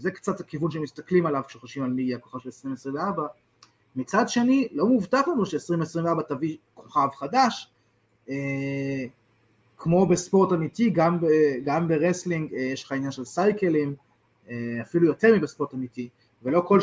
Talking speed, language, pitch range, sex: 145 wpm, Hebrew, 125-175 Hz, male